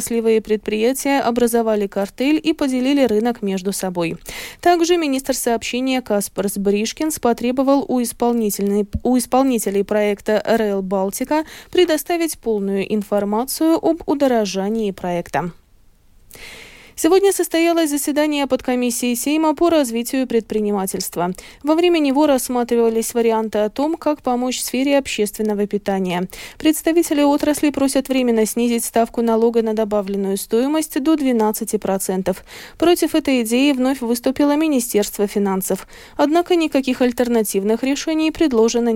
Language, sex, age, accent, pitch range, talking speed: Russian, female, 20-39, native, 210-290 Hz, 110 wpm